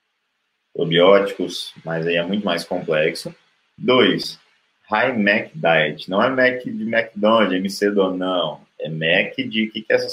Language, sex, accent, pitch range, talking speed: Portuguese, male, Brazilian, 85-110 Hz, 160 wpm